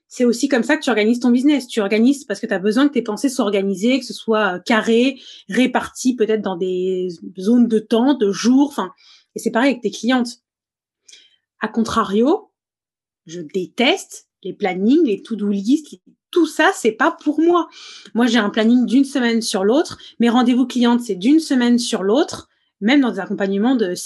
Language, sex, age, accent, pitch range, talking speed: French, female, 20-39, French, 215-275 Hz, 190 wpm